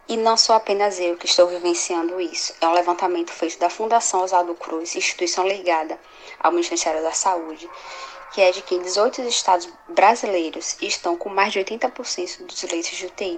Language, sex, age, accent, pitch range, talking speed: Portuguese, female, 20-39, Brazilian, 175-220 Hz, 180 wpm